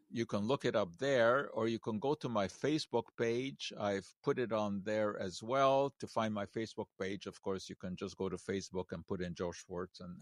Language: English